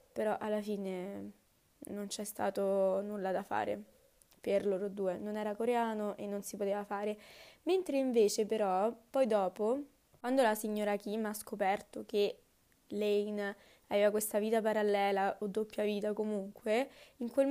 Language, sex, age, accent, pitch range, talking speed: Italian, female, 20-39, native, 200-235 Hz, 145 wpm